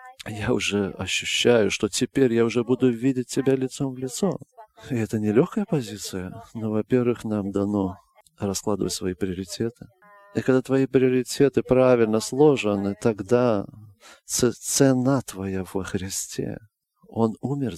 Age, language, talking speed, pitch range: 40-59, English, 130 wpm, 105-130 Hz